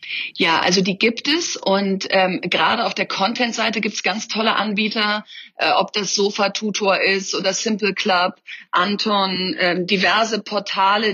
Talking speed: 150 wpm